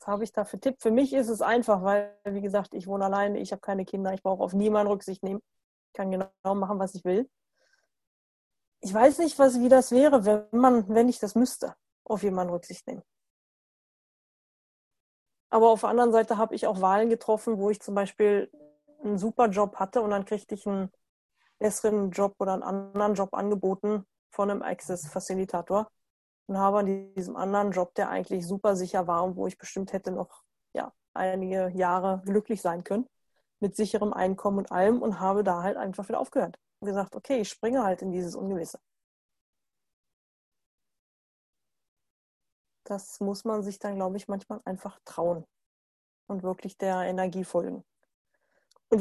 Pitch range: 190-220 Hz